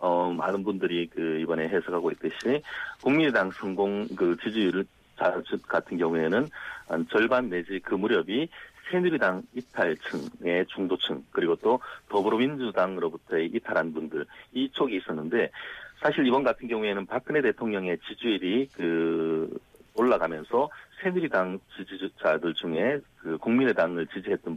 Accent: native